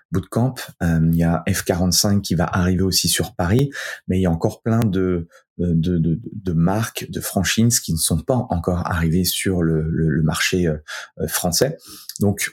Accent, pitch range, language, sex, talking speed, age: French, 85-100 Hz, French, male, 190 wpm, 30-49